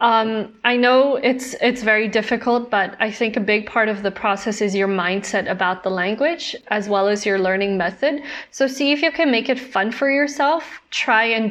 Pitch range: 200-245 Hz